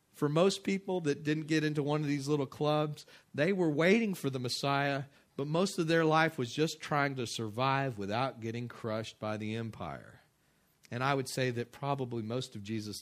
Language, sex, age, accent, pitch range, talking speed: English, male, 40-59, American, 110-155 Hz, 200 wpm